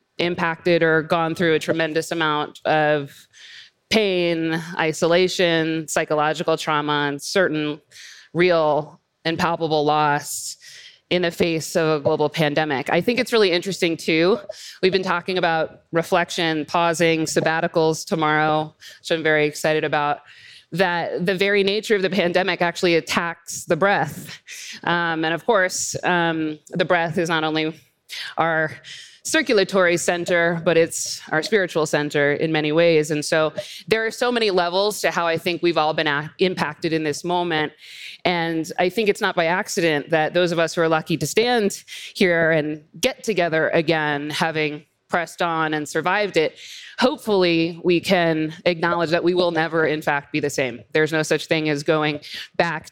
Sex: female